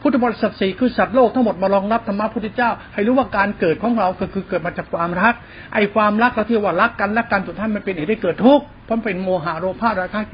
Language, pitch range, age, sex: Thai, 165-220 Hz, 60-79, male